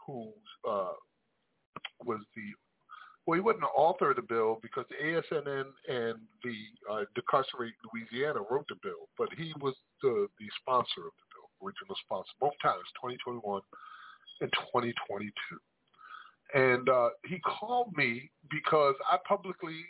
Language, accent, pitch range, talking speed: English, American, 130-210 Hz, 140 wpm